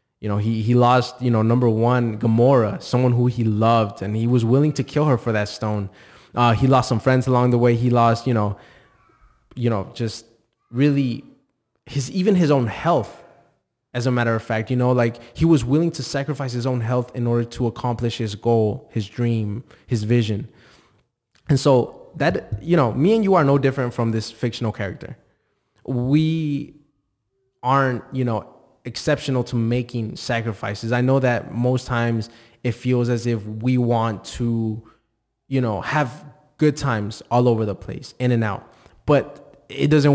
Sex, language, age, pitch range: male, English, 20-39, 115-135 Hz